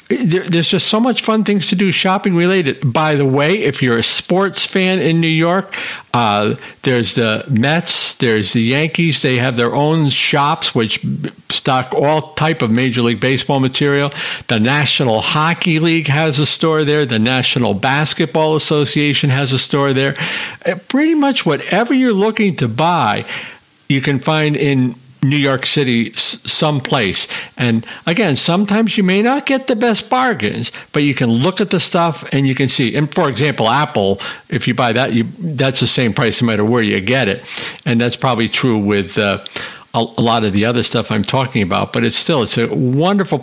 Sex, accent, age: male, American, 50-69